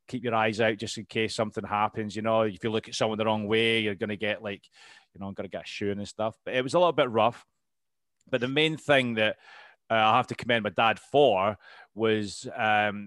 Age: 30-49